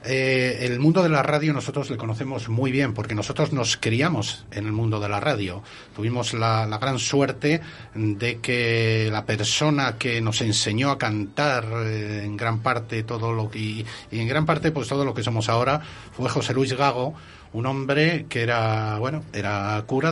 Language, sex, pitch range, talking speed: Spanish, male, 110-145 Hz, 185 wpm